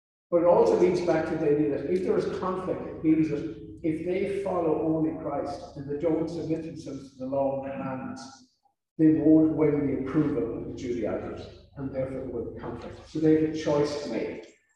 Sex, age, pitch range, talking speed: male, 50-69, 140-175 Hz, 200 wpm